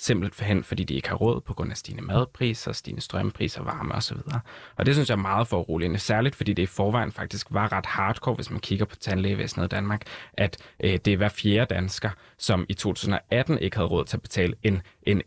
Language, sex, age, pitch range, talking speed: Danish, male, 20-39, 95-115 Hz, 230 wpm